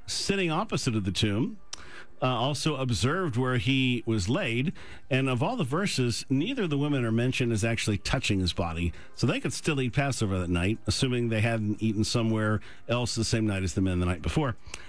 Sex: male